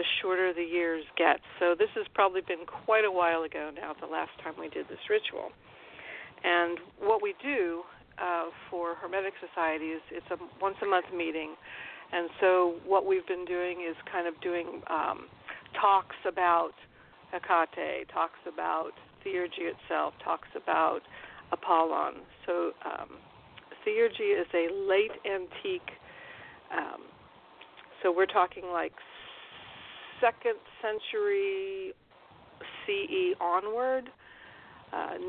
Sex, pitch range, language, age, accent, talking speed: female, 175-270 Hz, English, 50-69, American, 130 wpm